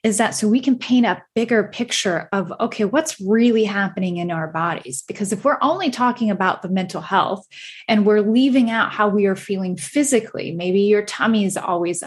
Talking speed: 200 wpm